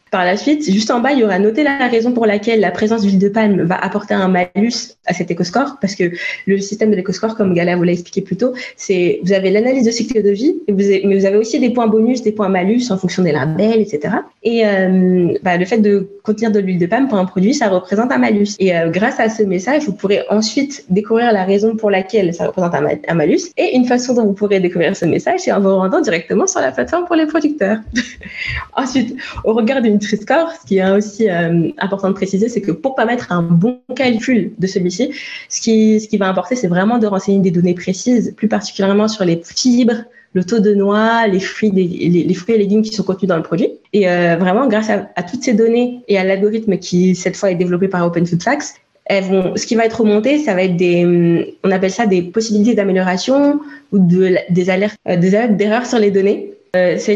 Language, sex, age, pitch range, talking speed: French, female, 20-39, 185-230 Hz, 235 wpm